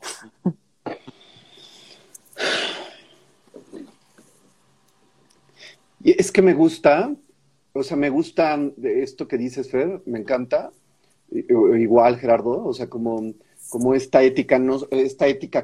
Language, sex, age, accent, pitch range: Spanish, male, 40-59, Mexican, 130-165 Hz